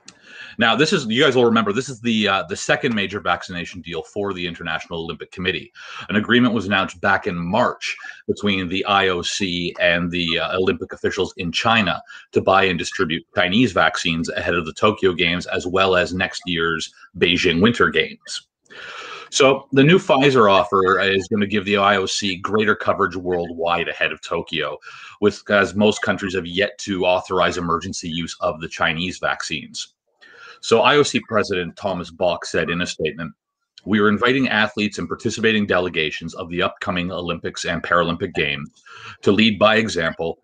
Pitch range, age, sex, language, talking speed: 90-105 Hz, 30-49, male, English, 170 wpm